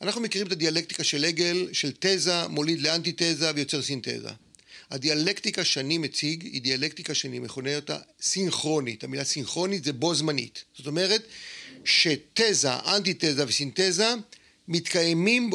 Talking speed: 125 wpm